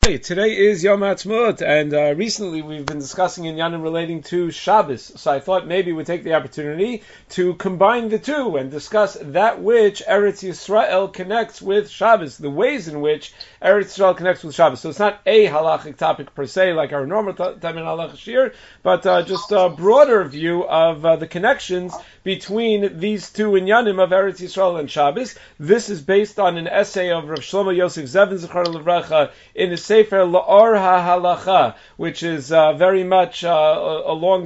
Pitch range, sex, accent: 165-205 Hz, male, American